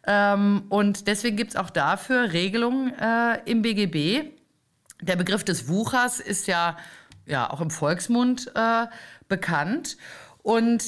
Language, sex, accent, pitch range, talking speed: German, female, German, 170-210 Hz, 125 wpm